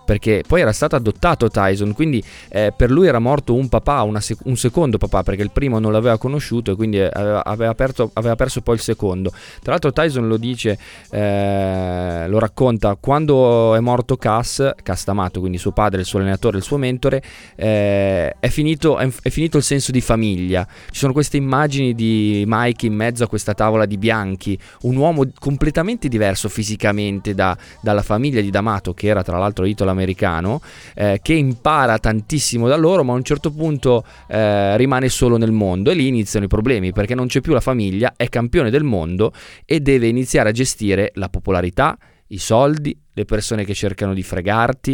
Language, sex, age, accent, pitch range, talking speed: Italian, male, 20-39, native, 95-125 Hz, 190 wpm